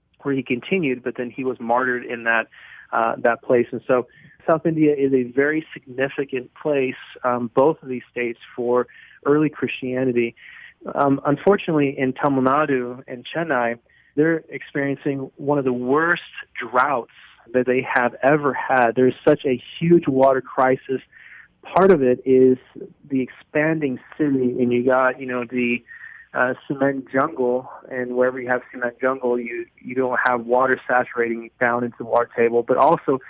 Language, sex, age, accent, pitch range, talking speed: English, male, 30-49, American, 125-145 Hz, 160 wpm